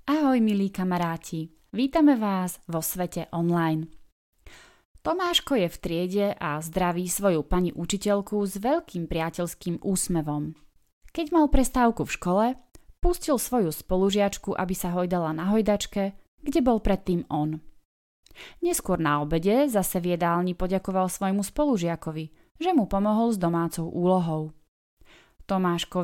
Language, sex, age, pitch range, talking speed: Czech, female, 20-39, 165-220 Hz, 120 wpm